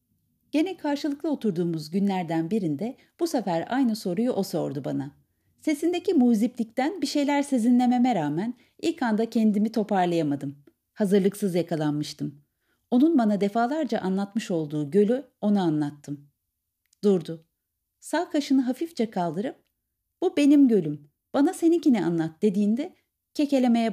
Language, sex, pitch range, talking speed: Turkish, female, 160-255 Hz, 115 wpm